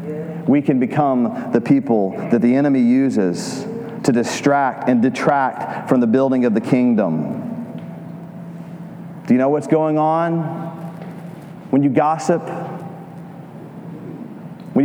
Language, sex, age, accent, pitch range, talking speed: English, male, 40-59, American, 140-170 Hz, 115 wpm